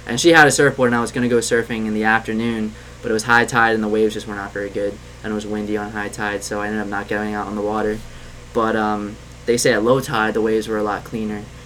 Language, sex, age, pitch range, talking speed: English, male, 20-39, 105-120 Hz, 295 wpm